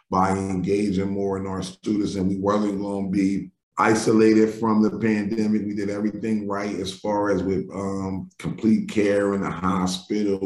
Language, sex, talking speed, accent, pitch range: English, male, 170 wpm, American, 95-110 Hz